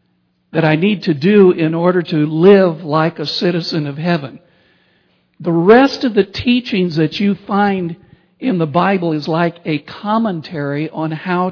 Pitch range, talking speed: 155-195 Hz, 160 wpm